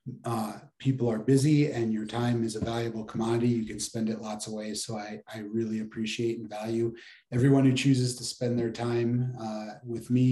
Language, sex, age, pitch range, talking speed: English, male, 30-49, 110-125 Hz, 205 wpm